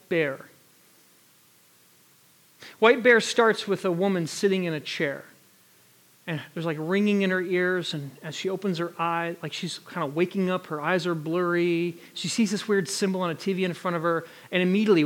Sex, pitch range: male, 170-225 Hz